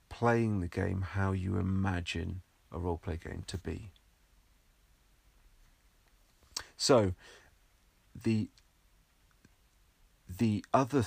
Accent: British